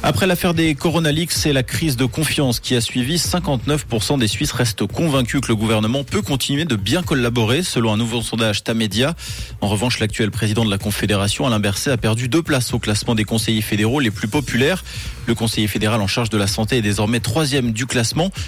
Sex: male